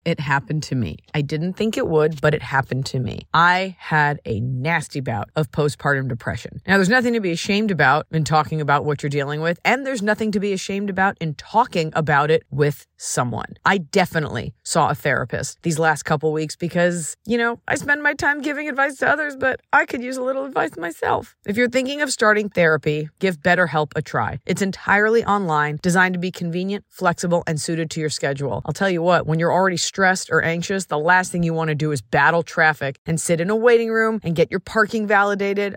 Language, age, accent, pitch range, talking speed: English, 30-49, American, 150-190 Hz, 220 wpm